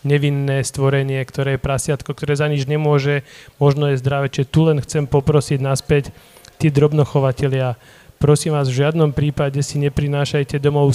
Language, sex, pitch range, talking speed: Slovak, male, 140-150 Hz, 150 wpm